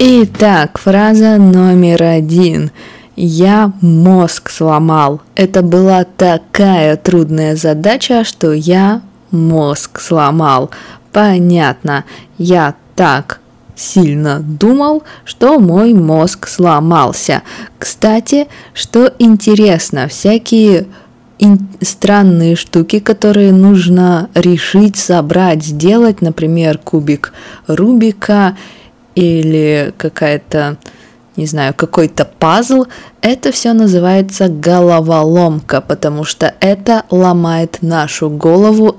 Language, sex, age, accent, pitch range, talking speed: Russian, female, 20-39, native, 160-205 Hz, 85 wpm